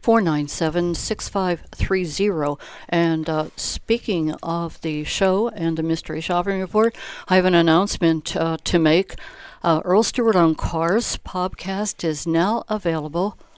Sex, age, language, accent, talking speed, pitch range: female, 60-79, English, American, 145 wpm, 165-205 Hz